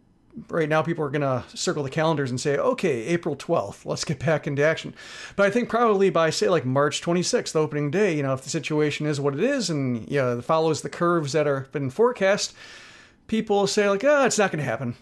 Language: English